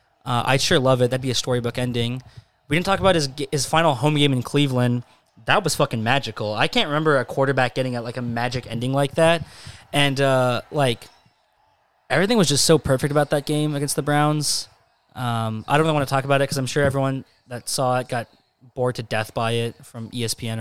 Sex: male